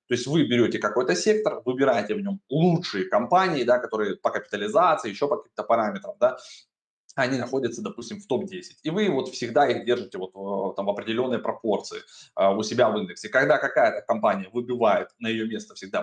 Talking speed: 175 wpm